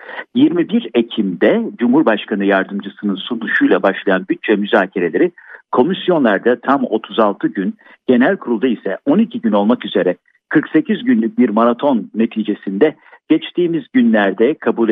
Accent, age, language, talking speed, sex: native, 60-79, Turkish, 110 wpm, male